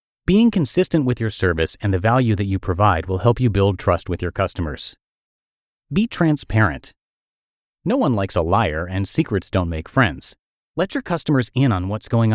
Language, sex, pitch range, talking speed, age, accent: English, male, 100-135 Hz, 185 wpm, 30-49, American